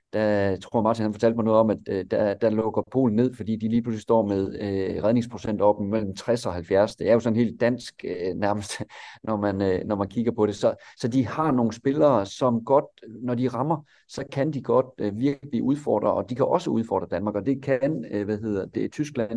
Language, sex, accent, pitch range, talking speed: Danish, male, native, 105-125 Hz, 220 wpm